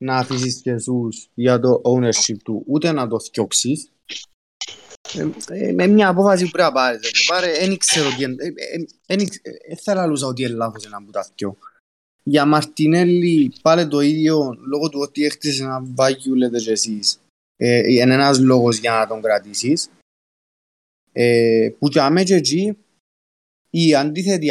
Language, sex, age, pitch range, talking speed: Greek, male, 20-39, 115-165 Hz, 150 wpm